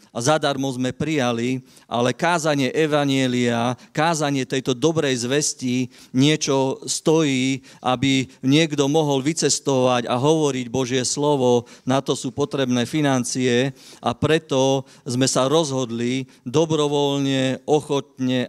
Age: 40-59